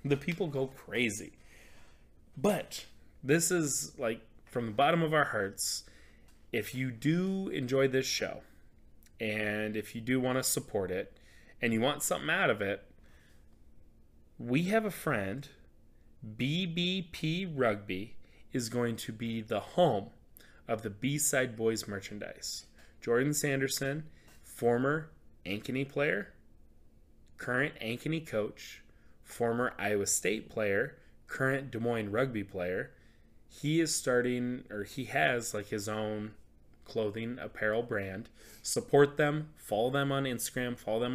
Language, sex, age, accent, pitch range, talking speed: English, male, 30-49, American, 105-135 Hz, 130 wpm